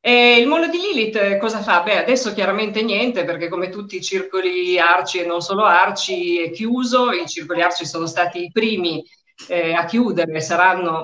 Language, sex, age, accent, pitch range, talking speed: Italian, female, 50-69, native, 170-220 Hz, 185 wpm